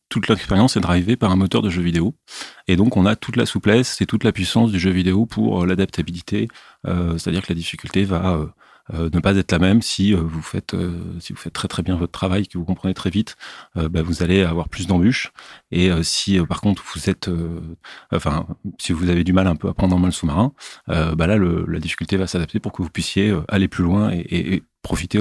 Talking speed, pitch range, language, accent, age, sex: 255 wpm, 85-105 Hz, French, French, 30-49, male